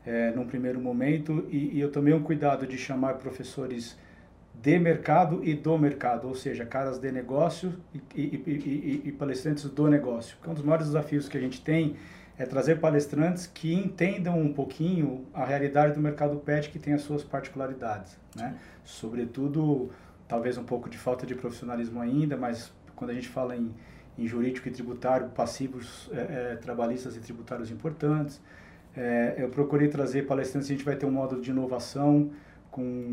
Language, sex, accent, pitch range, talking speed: Portuguese, male, Brazilian, 120-145 Hz, 180 wpm